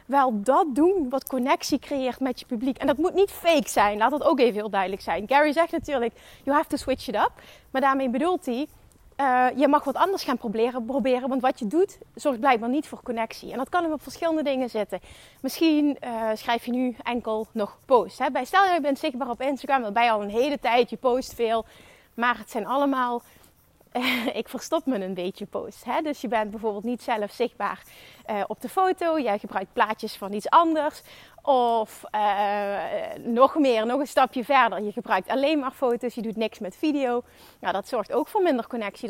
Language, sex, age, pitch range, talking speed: Dutch, female, 30-49, 230-285 Hz, 215 wpm